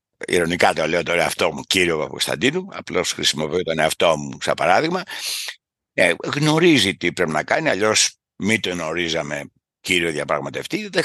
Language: Greek